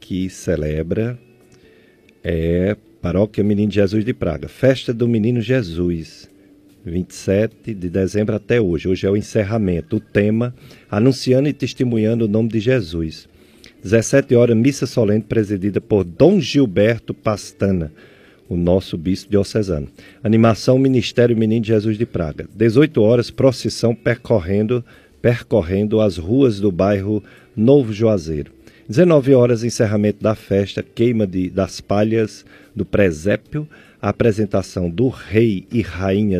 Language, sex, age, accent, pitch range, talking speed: Portuguese, male, 50-69, Brazilian, 95-120 Hz, 125 wpm